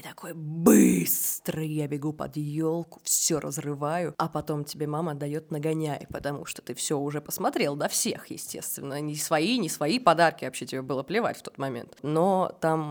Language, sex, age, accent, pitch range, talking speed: Russian, female, 20-39, native, 150-185 Hz, 175 wpm